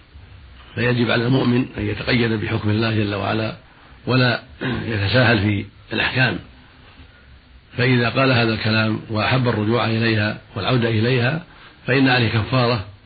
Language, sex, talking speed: Arabic, male, 115 wpm